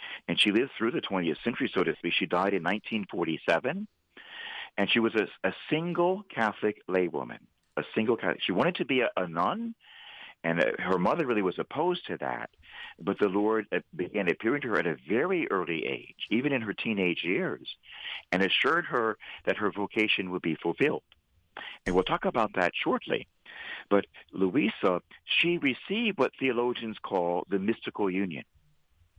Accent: American